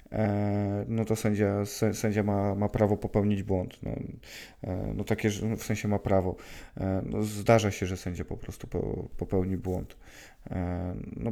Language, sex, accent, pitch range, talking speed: Polish, male, native, 95-110 Hz, 135 wpm